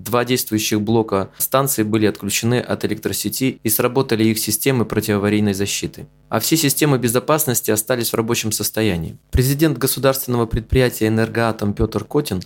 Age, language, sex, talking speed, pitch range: 20-39, Russian, male, 135 wpm, 105-130 Hz